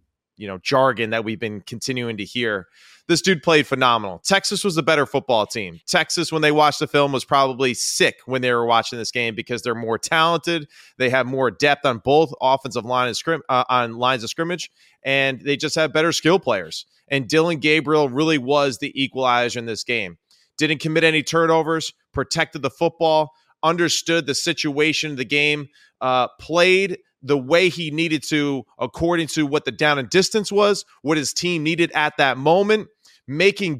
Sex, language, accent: male, English, American